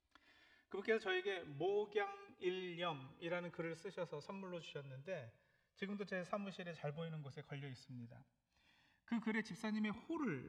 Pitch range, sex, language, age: 145-200 Hz, male, Korean, 40-59